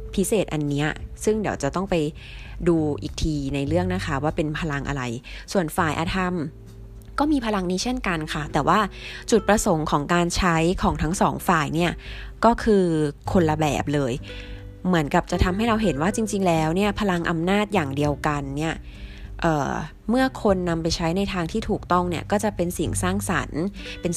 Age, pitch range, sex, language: 20-39, 145-195 Hz, female, Thai